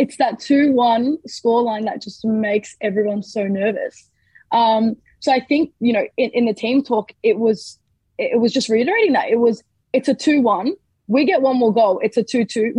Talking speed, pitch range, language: 190 wpm, 215-255 Hz, English